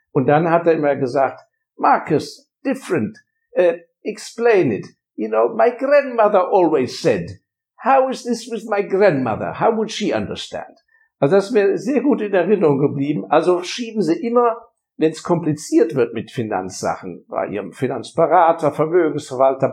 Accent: German